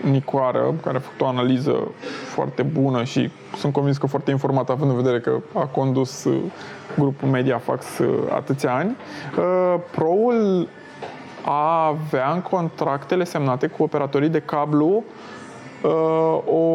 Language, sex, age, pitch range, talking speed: Romanian, male, 20-39, 135-180 Hz, 140 wpm